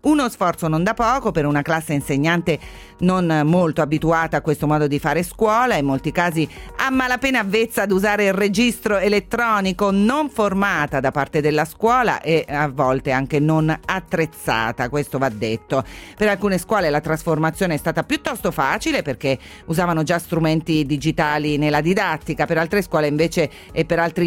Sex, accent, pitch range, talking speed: female, native, 160-205 Hz, 165 wpm